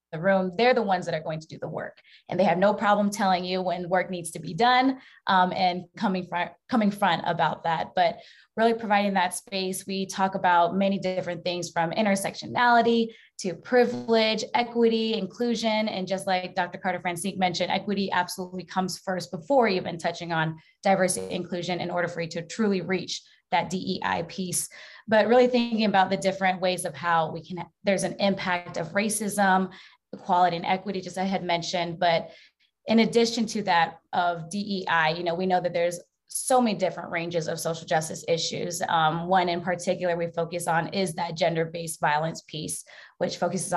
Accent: American